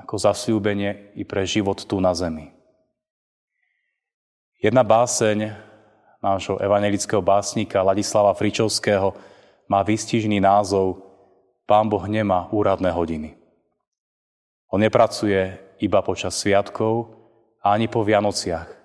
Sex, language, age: male, Slovak, 30-49